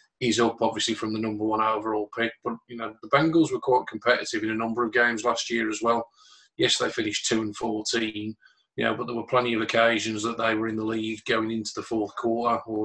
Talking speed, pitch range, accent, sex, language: 245 wpm, 110-115 Hz, British, male, English